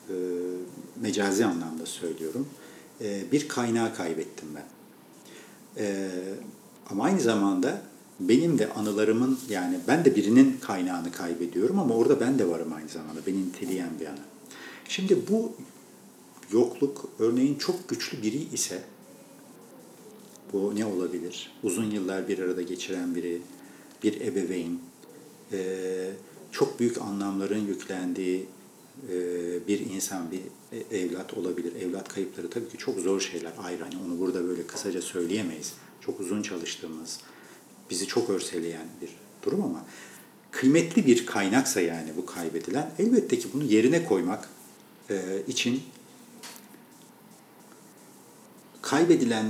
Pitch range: 90-140 Hz